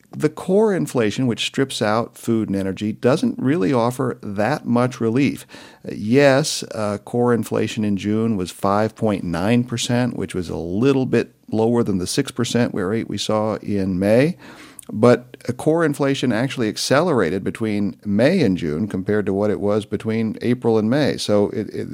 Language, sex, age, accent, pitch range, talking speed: English, male, 50-69, American, 95-125 Hz, 155 wpm